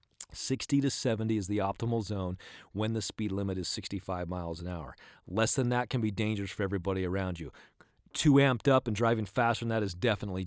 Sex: male